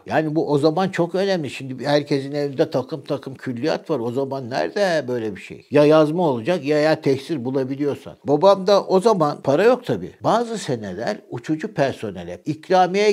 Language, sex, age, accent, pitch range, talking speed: Turkish, male, 60-79, native, 135-175 Hz, 170 wpm